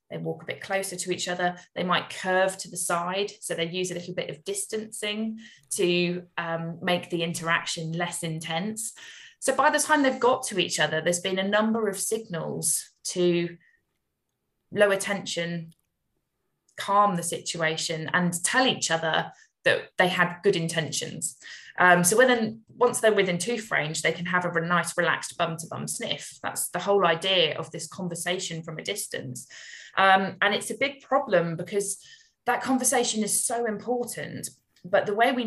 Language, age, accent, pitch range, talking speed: English, 20-39, British, 170-210 Hz, 175 wpm